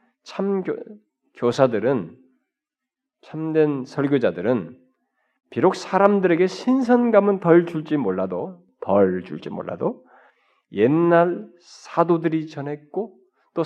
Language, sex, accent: Korean, male, native